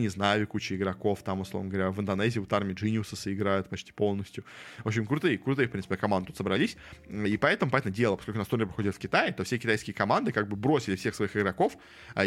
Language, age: Russian, 20-39